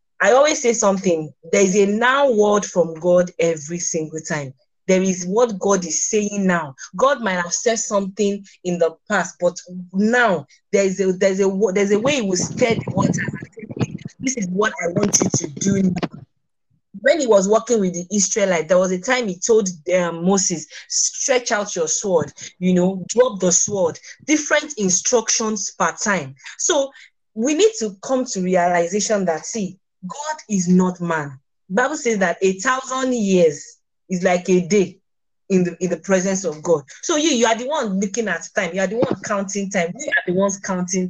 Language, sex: English, female